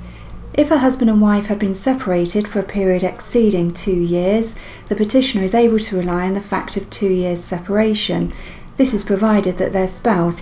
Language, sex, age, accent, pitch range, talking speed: English, female, 40-59, British, 180-215 Hz, 190 wpm